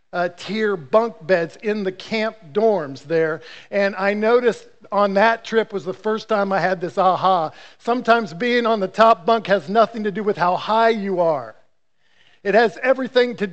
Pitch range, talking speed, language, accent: 185-225 Hz, 185 wpm, English, American